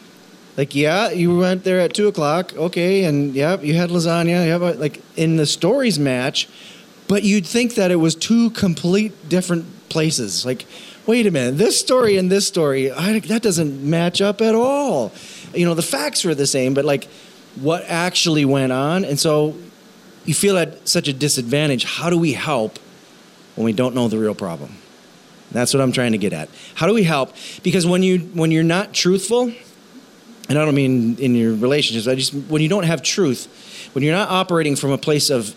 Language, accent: English, American